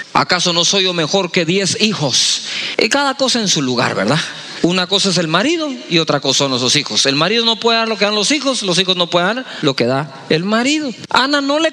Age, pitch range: 40-59, 190-275 Hz